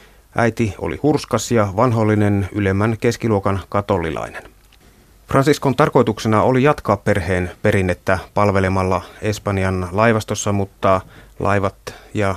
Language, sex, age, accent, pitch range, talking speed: Finnish, male, 30-49, native, 95-110 Hz, 95 wpm